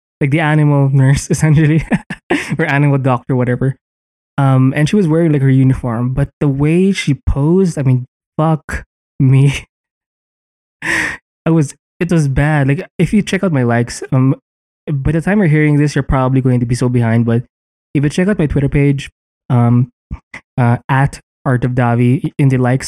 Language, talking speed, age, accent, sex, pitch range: English, 180 wpm, 20-39, Filipino, male, 125-150 Hz